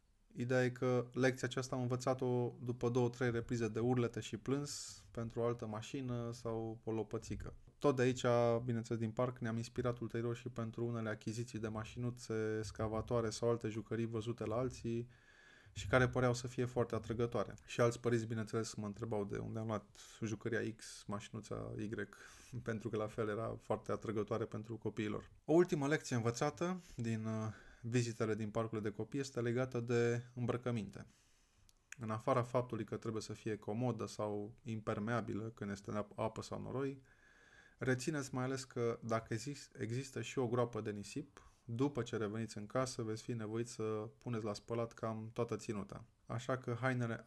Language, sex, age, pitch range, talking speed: Romanian, male, 20-39, 110-125 Hz, 170 wpm